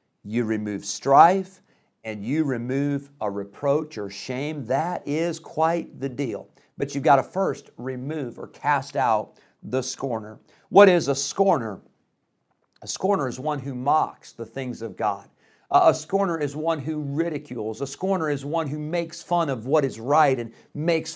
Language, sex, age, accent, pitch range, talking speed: English, male, 50-69, American, 130-160 Hz, 170 wpm